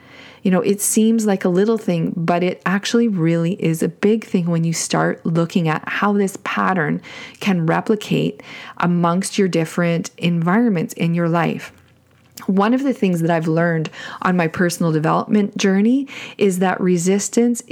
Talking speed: 165 wpm